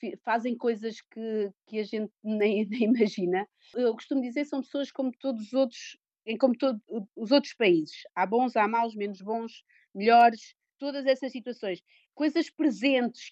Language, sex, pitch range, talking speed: Portuguese, female, 200-255 Hz, 160 wpm